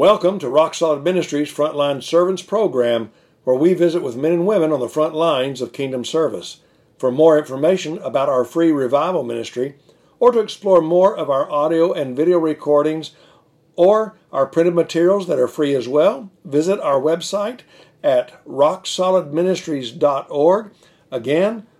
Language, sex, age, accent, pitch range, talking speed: English, male, 60-79, American, 145-175 Hz, 150 wpm